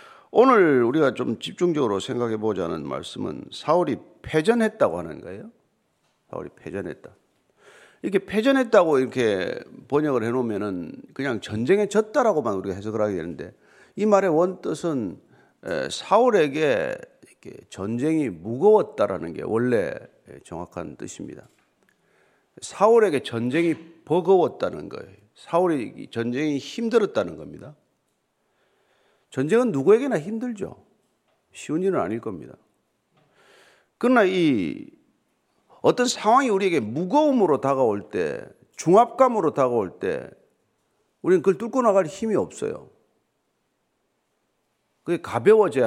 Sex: male